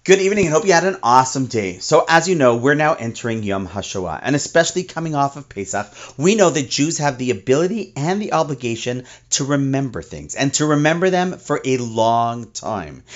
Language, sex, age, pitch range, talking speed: English, male, 40-59, 115-165 Hz, 205 wpm